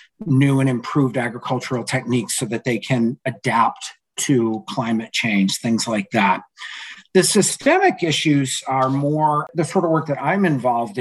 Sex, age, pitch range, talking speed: male, 50-69, 130-160 Hz, 155 wpm